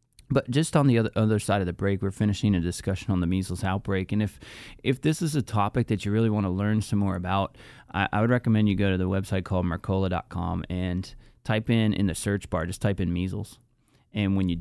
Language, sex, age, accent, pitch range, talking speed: English, male, 20-39, American, 95-110 Hz, 240 wpm